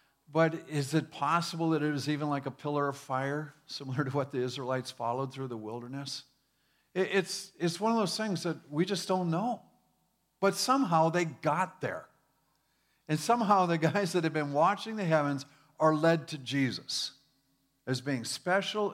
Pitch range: 135-170 Hz